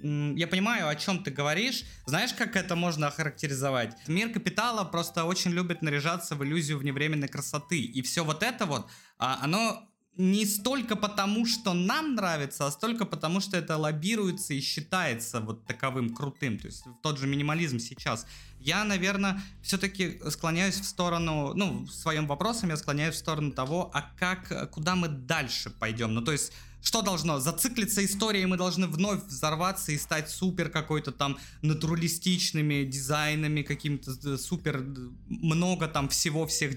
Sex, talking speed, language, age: male, 155 wpm, Russian, 20-39